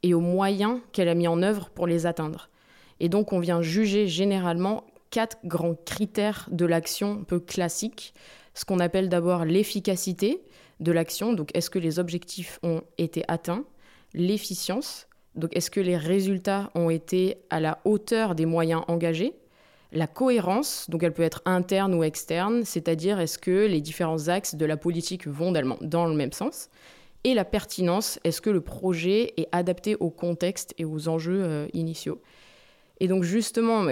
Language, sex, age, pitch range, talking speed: French, female, 20-39, 165-200 Hz, 170 wpm